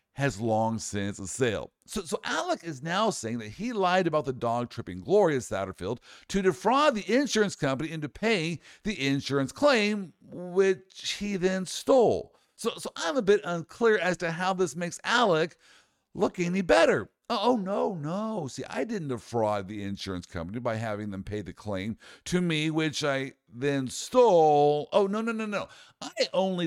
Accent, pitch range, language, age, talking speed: American, 135-190 Hz, English, 60-79, 170 wpm